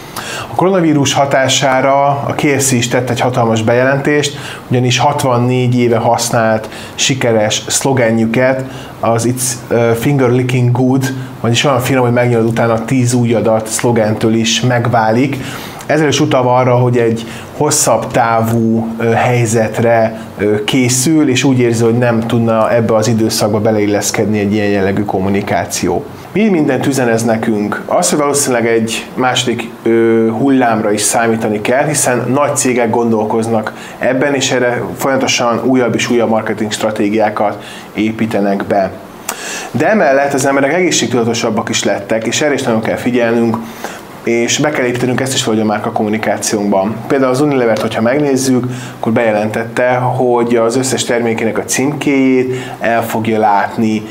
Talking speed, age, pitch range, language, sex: 140 wpm, 30-49, 110-130 Hz, Hungarian, male